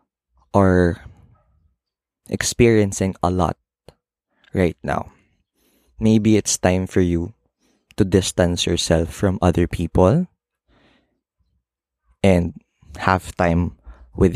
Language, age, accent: Filipino, 20-39, native